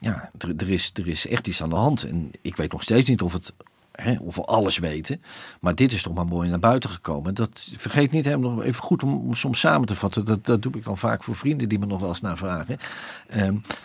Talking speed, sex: 260 wpm, male